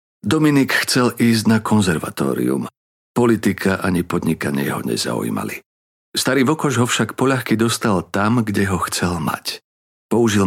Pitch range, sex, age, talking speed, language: 90-120 Hz, male, 50-69, 125 wpm, Slovak